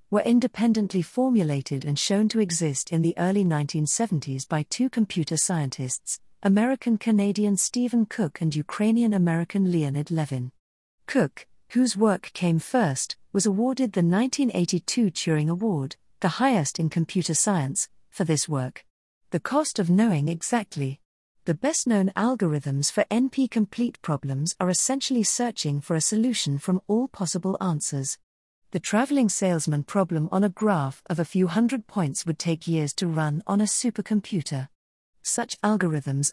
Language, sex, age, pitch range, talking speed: English, female, 50-69, 155-220 Hz, 140 wpm